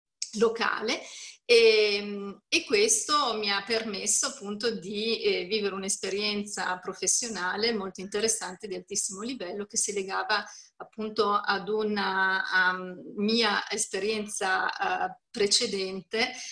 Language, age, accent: Italian, 30-49, native